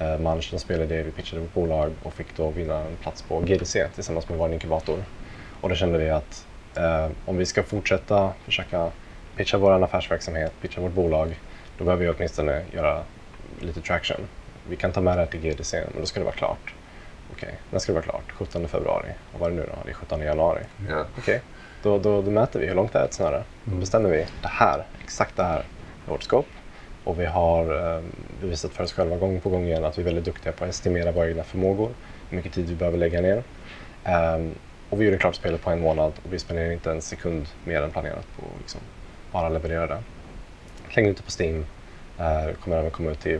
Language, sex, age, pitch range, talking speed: Swedish, male, 20-39, 80-90 Hz, 225 wpm